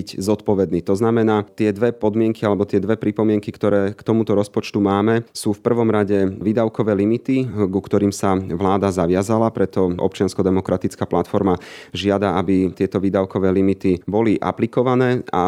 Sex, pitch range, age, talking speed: male, 95-110 Hz, 30-49, 145 wpm